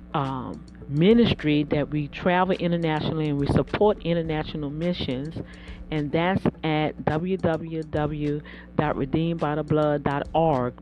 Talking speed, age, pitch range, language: 85 wpm, 40-59, 150-205 Hz, English